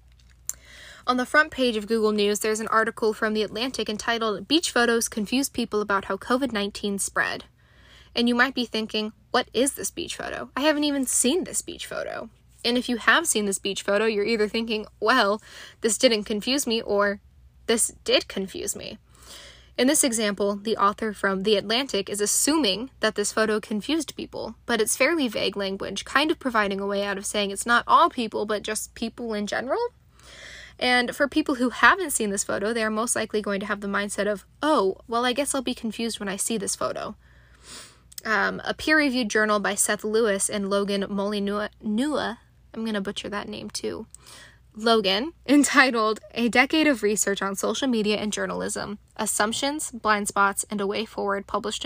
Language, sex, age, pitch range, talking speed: English, female, 10-29, 205-250 Hz, 190 wpm